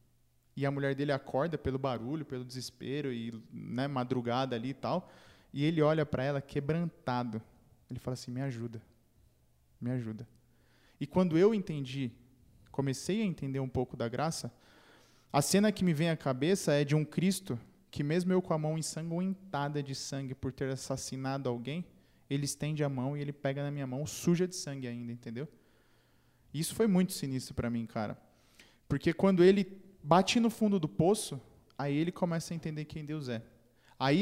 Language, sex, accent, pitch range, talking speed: Portuguese, male, Brazilian, 130-190 Hz, 180 wpm